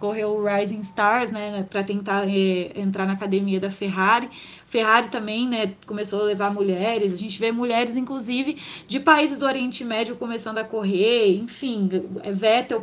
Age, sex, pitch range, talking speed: 20-39, female, 200-255 Hz, 165 wpm